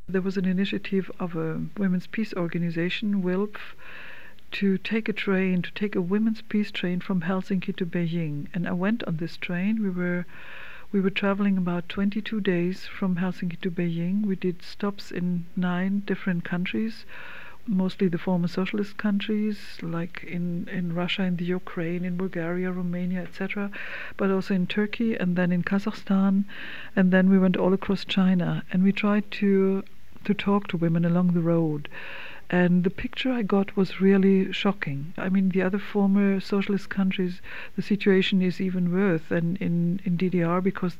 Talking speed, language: 170 wpm, English